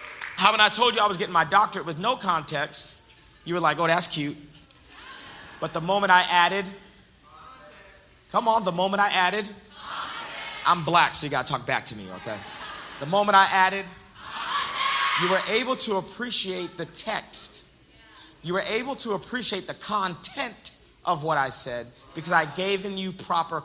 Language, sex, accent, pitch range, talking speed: English, male, American, 150-195 Hz, 175 wpm